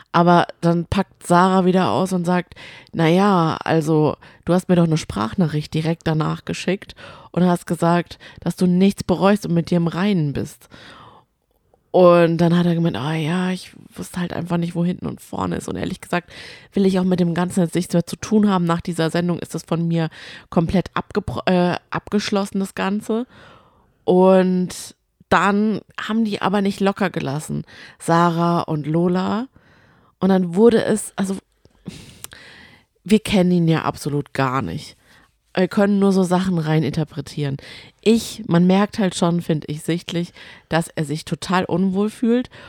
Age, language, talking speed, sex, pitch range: 20-39, German, 165 wpm, female, 165-190 Hz